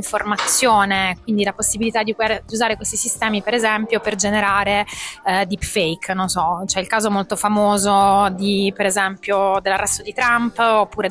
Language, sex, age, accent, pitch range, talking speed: Italian, female, 20-39, native, 200-220 Hz, 150 wpm